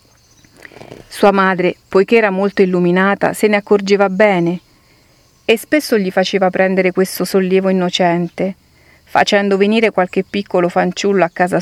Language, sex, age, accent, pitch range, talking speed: Italian, female, 40-59, native, 180-215 Hz, 130 wpm